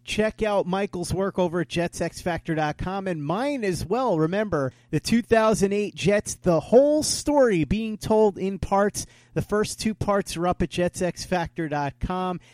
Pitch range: 140-185 Hz